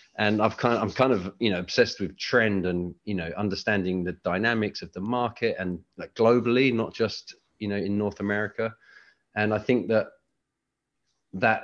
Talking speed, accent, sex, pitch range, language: 185 wpm, British, male, 95-115 Hz, English